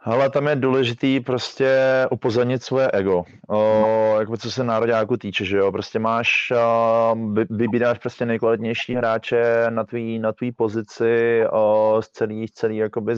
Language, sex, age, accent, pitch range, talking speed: Czech, male, 20-39, native, 105-115 Hz, 150 wpm